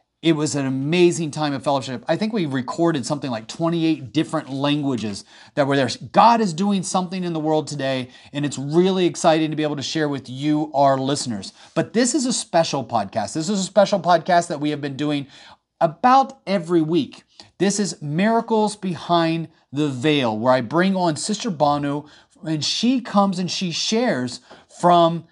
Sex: male